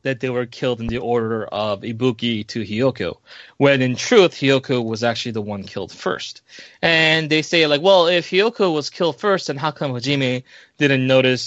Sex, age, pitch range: male, 20-39, 120-155 Hz